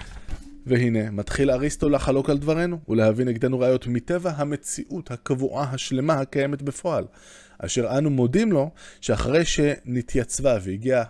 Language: Hebrew